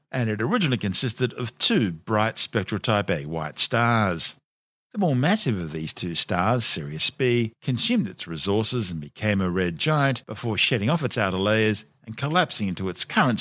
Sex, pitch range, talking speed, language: male, 100-125 Hz, 180 wpm, English